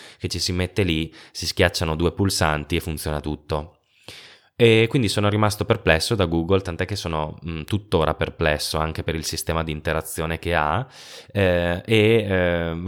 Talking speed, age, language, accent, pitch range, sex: 165 wpm, 20-39, Italian, native, 75-90 Hz, male